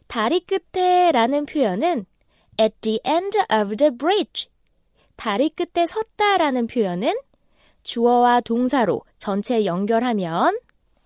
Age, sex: 20-39, female